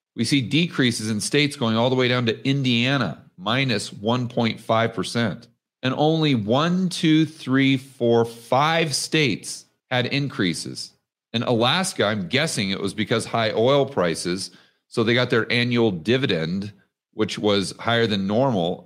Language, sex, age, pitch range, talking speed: English, male, 40-59, 100-125 Hz, 145 wpm